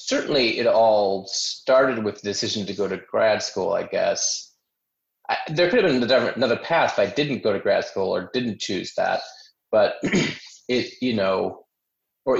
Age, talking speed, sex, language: 30-49, 185 wpm, male, English